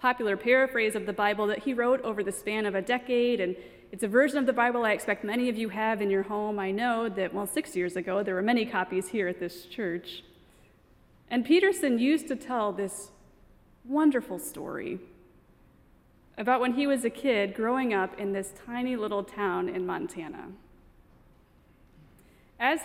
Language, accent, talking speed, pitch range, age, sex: English, American, 180 wpm, 200-275 Hz, 30-49, female